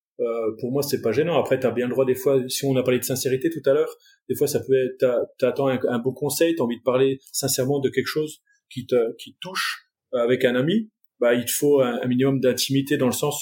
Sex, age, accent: male, 30-49, French